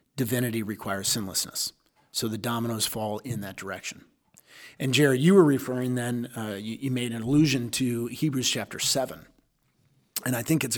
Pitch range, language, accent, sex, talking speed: 115-145 Hz, English, American, male, 165 wpm